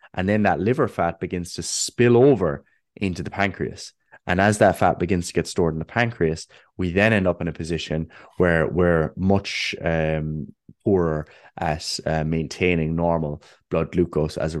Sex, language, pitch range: male, English, 85-100 Hz